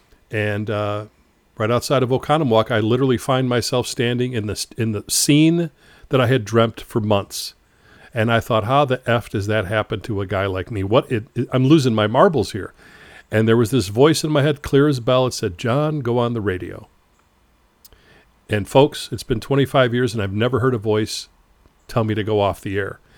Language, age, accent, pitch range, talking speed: English, 50-69, American, 110-130 Hz, 205 wpm